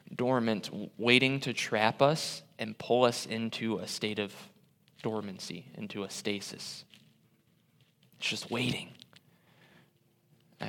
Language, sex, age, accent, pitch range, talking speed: English, male, 20-39, American, 110-140 Hz, 110 wpm